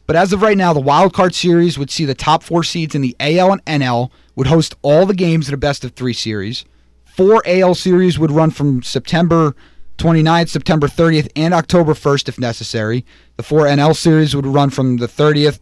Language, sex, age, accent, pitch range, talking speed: English, male, 30-49, American, 130-170 Hz, 210 wpm